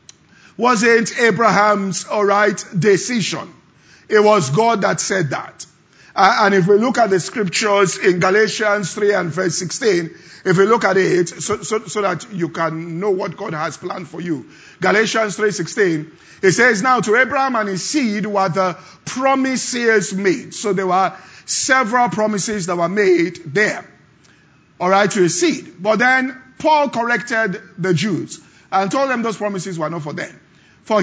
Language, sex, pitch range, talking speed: English, male, 185-235 Hz, 170 wpm